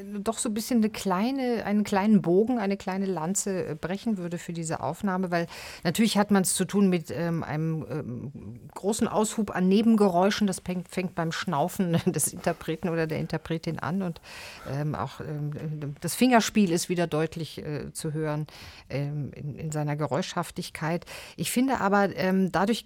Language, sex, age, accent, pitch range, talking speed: German, female, 50-69, German, 165-200 Hz, 165 wpm